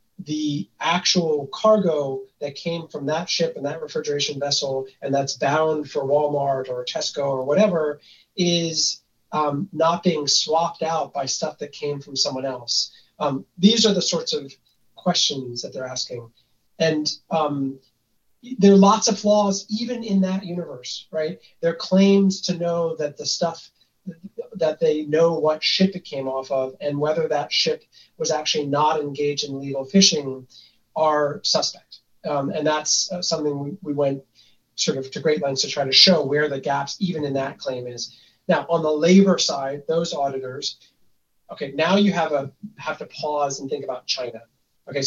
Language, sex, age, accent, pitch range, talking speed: English, male, 30-49, American, 140-175 Hz, 170 wpm